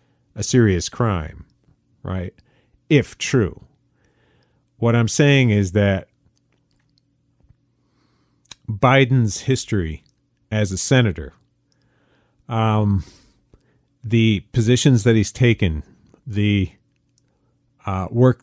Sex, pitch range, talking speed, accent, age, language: male, 95-125 Hz, 80 wpm, American, 40-59, English